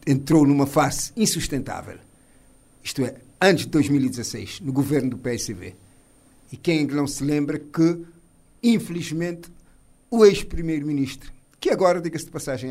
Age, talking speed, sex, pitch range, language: 50-69, 125 wpm, male, 130-175 Hz, Portuguese